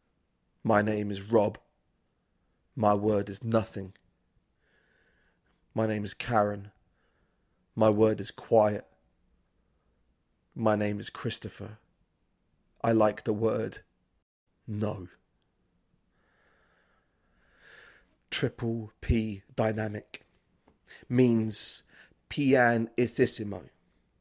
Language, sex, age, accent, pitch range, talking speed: English, male, 30-49, British, 100-115 Hz, 75 wpm